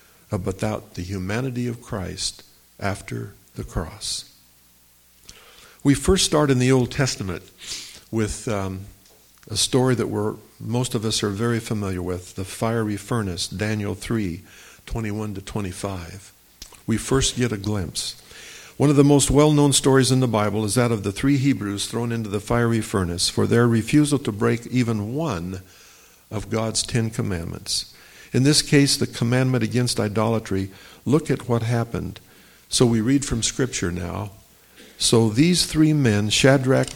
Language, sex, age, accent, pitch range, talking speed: English, male, 50-69, American, 95-125 Hz, 150 wpm